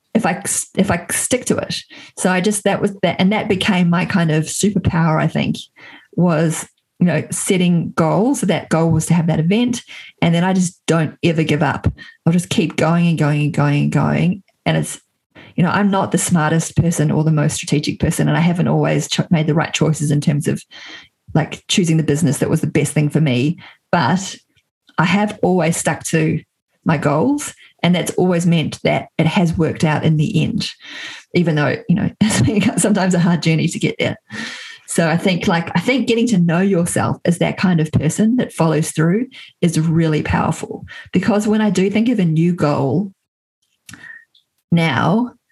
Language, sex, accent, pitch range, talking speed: English, female, Australian, 155-195 Hz, 200 wpm